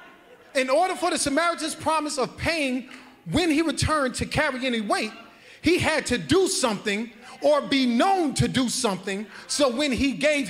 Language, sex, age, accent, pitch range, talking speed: English, male, 30-49, American, 220-295 Hz, 170 wpm